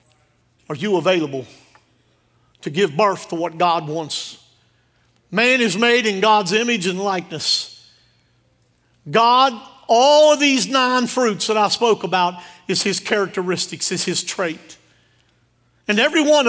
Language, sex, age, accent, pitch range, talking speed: English, male, 50-69, American, 180-295 Hz, 135 wpm